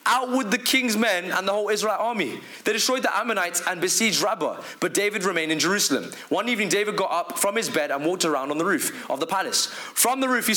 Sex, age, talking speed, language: male, 20-39, 245 wpm, English